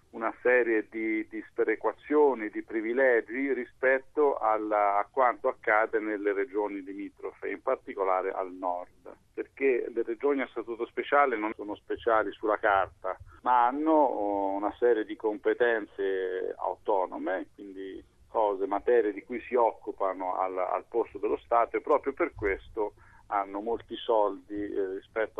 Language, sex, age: Italian, male, 50-69